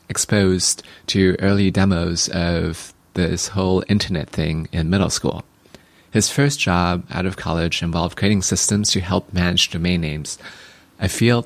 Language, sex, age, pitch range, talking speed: English, male, 30-49, 85-105 Hz, 145 wpm